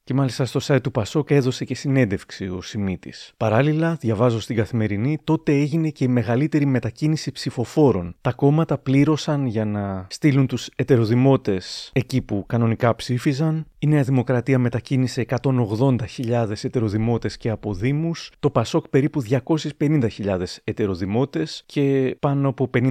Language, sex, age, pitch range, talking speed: Greek, male, 30-49, 110-140 Hz, 130 wpm